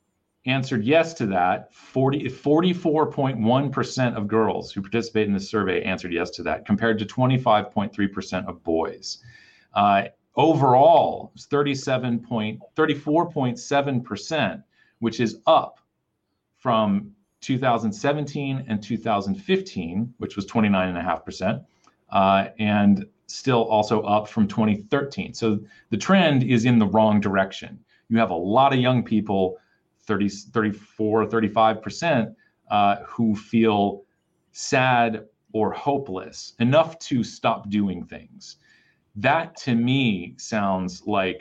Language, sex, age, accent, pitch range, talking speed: English, male, 40-59, American, 100-130 Hz, 115 wpm